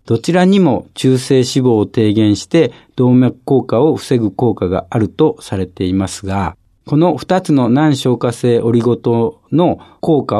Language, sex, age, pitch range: Japanese, male, 60-79, 110-155 Hz